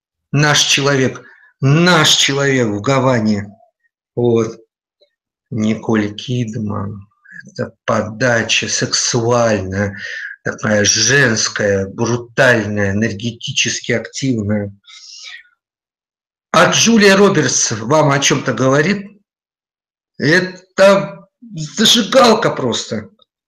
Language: Russian